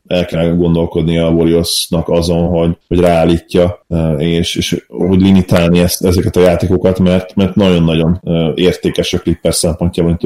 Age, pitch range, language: 30-49, 85-95 Hz, Hungarian